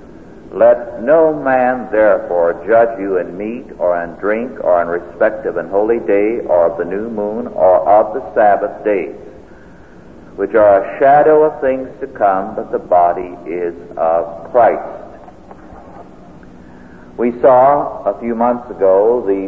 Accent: American